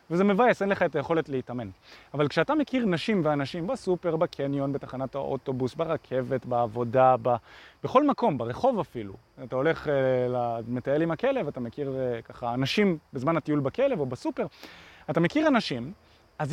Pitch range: 135-205 Hz